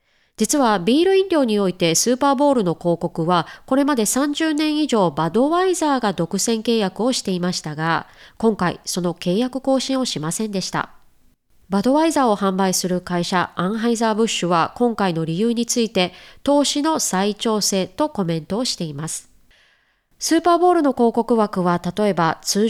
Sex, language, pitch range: female, Japanese, 185-260 Hz